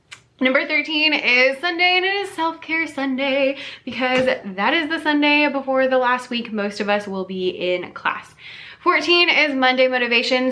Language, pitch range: English, 195-280 Hz